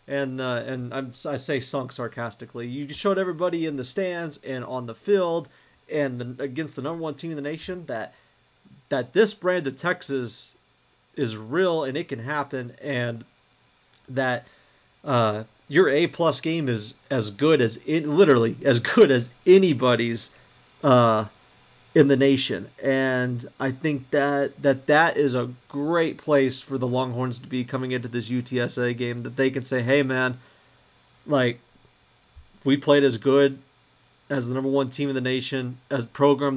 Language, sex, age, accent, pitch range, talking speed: English, male, 40-59, American, 125-145 Hz, 165 wpm